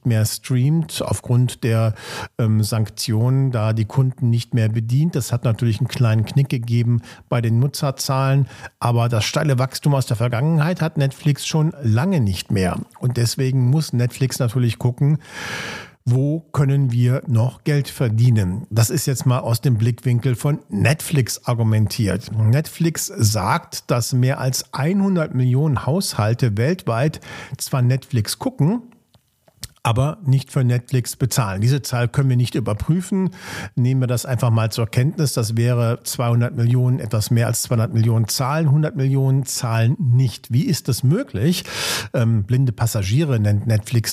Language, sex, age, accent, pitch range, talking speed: German, male, 50-69, German, 115-145 Hz, 150 wpm